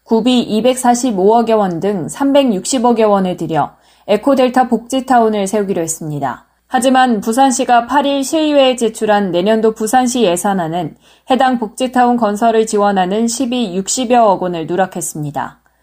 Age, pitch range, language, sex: 20-39, 195-255 Hz, Korean, female